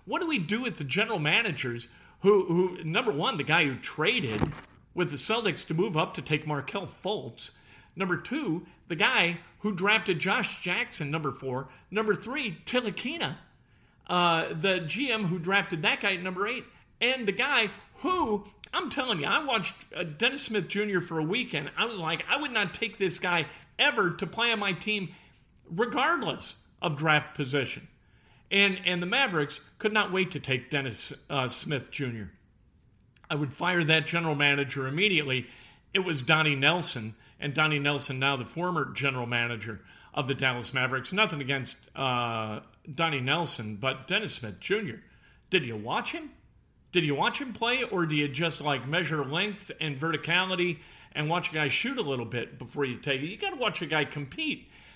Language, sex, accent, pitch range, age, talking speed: English, male, American, 140-200 Hz, 50-69, 180 wpm